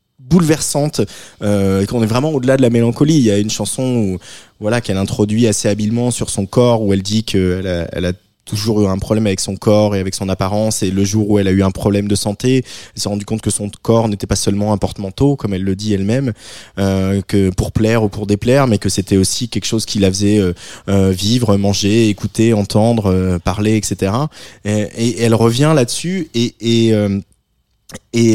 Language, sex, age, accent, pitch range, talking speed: French, male, 20-39, French, 100-125 Hz, 215 wpm